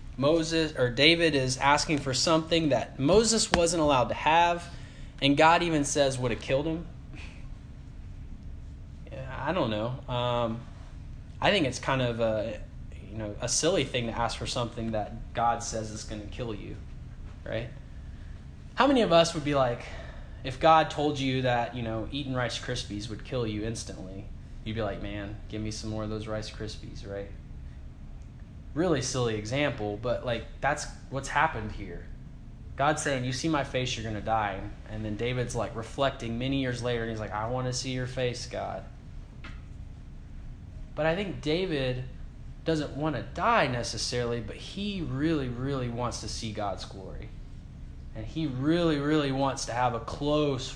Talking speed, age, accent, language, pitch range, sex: 175 wpm, 10-29, American, English, 105-140 Hz, male